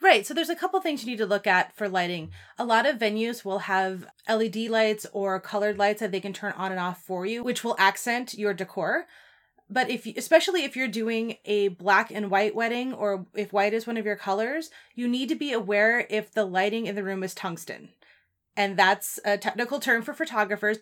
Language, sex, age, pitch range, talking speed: English, female, 30-49, 200-240 Hz, 225 wpm